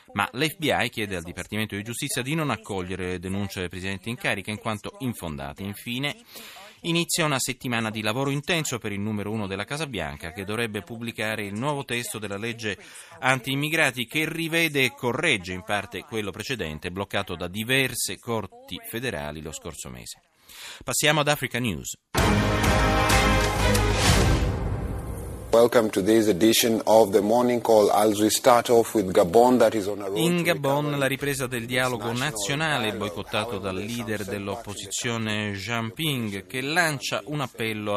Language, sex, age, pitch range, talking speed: Italian, male, 30-49, 100-135 Hz, 125 wpm